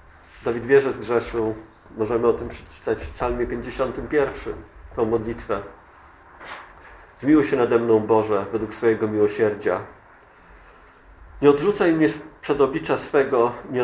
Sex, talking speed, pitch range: male, 115 wpm, 105-135 Hz